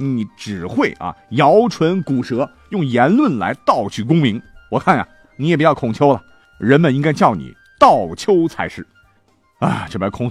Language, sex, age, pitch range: Chinese, male, 50-69, 100-155 Hz